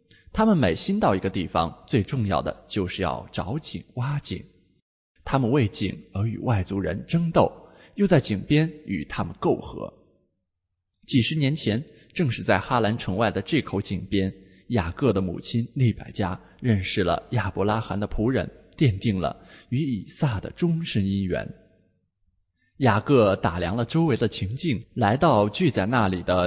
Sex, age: male, 20-39